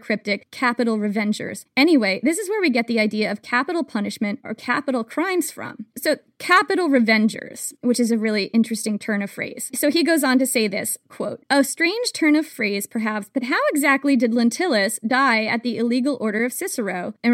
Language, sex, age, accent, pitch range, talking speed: English, female, 20-39, American, 220-275 Hz, 195 wpm